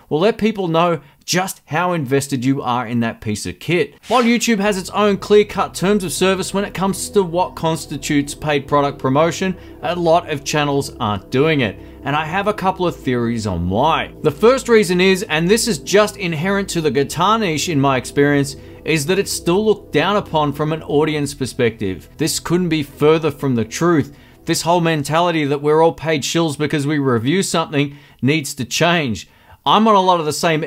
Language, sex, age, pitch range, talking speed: English, male, 30-49, 140-180 Hz, 205 wpm